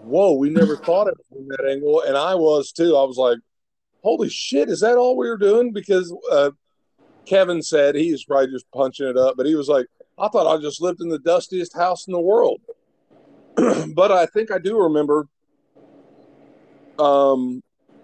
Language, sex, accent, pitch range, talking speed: English, male, American, 145-195 Hz, 190 wpm